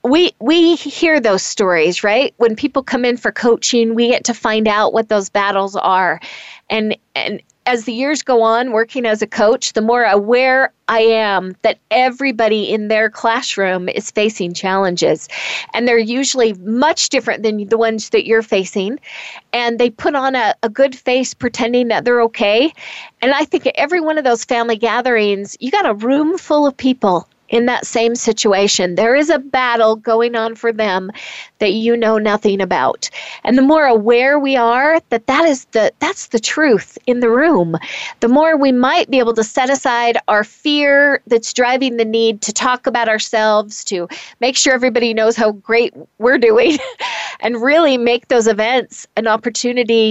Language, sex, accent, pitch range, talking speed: English, female, American, 215-260 Hz, 180 wpm